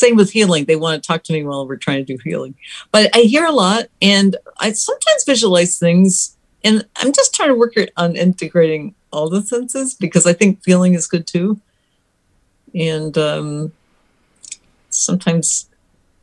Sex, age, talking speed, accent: female, 50-69, 170 wpm, American